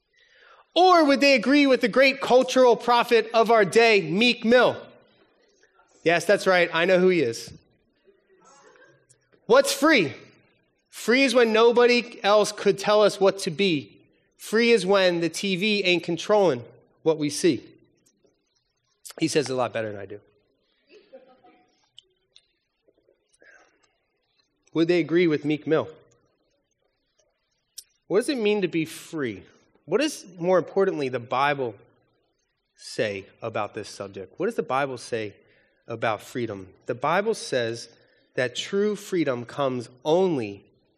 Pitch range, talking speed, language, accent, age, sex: 150-240 Hz, 135 wpm, English, American, 30-49, male